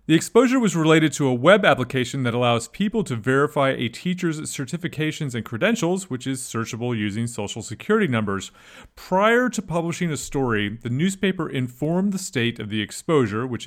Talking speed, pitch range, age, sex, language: 170 wpm, 115-175 Hz, 30-49, male, English